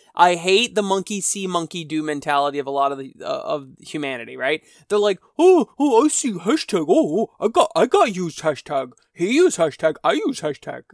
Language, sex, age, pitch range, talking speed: English, male, 20-39, 150-195 Hz, 205 wpm